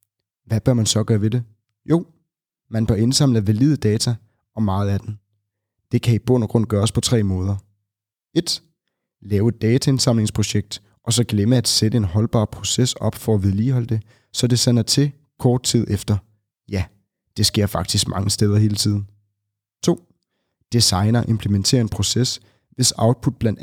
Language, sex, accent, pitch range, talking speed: Danish, male, native, 105-120 Hz, 170 wpm